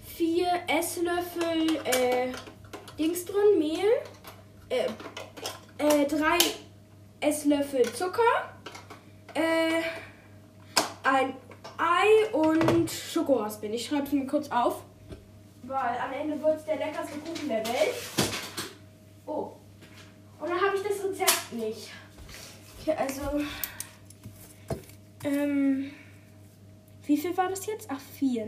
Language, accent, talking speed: German, German, 105 wpm